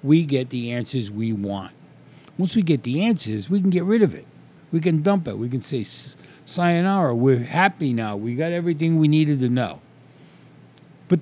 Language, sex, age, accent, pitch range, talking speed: English, male, 60-79, American, 120-165 Hz, 195 wpm